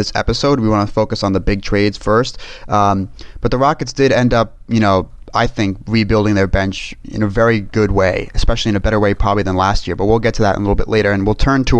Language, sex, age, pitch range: English, male, 30-49, 100-120 Hz